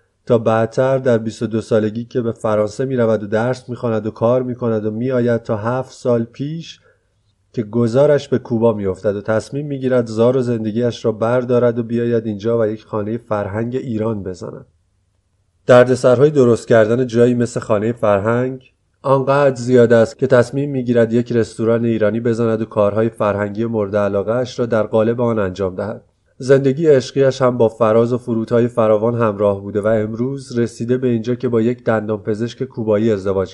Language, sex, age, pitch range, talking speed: Persian, male, 30-49, 110-125 Hz, 170 wpm